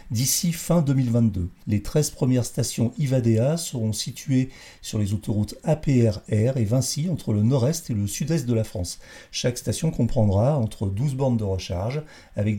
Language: French